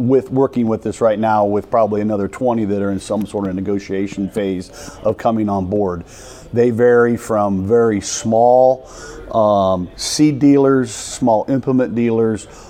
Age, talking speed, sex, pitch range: 40-59, 155 wpm, male, 105-125 Hz